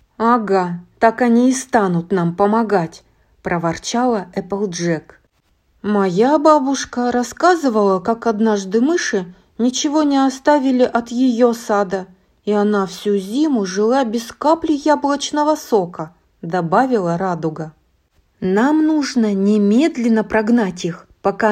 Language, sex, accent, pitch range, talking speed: Russian, female, native, 185-255 Hz, 110 wpm